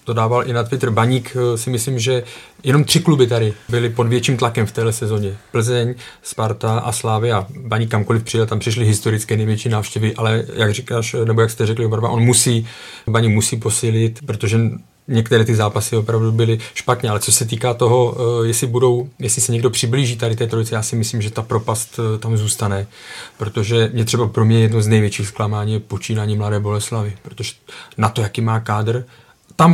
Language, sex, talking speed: Czech, male, 190 wpm